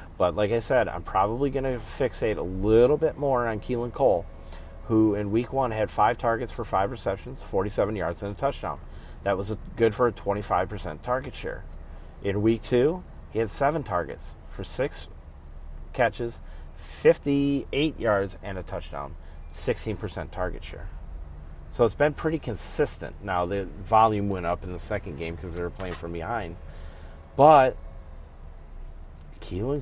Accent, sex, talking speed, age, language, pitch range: American, male, 160 wpm, 40-59, English, 80-110 Hz